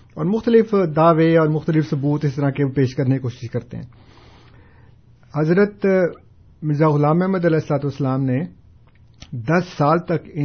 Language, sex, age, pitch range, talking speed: Urdu, male, 50-69, 125-170 Hz, 145 wpm